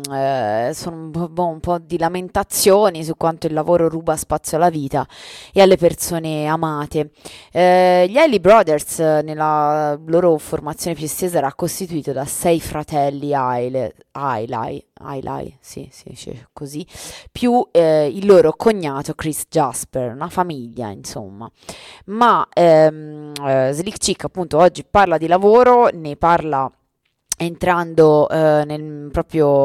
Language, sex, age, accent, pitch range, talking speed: Italian, female, 20-39, native, 140-170 Hz, 140 wpm